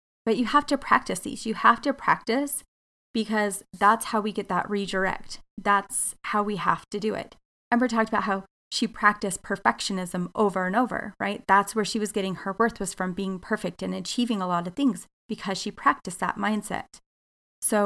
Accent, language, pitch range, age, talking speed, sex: American, English, 195-225 Hz, 30-49, 195 wpm, female